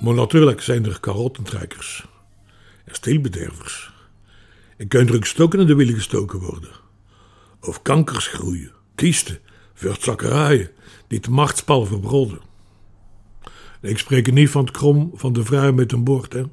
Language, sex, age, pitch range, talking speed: Dutch, male, 60-79, 100-135 Hz, 140 wpm